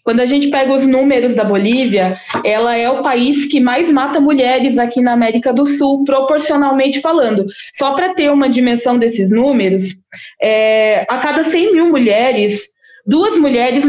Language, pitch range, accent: Portuguese, 235-290 Hz, Brazilian